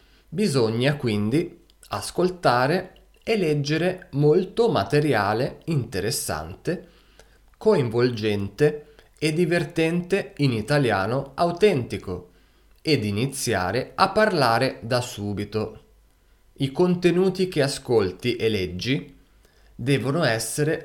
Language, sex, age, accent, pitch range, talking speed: Italian, male, 20-39, native, 110-150 Hz, 80 wpm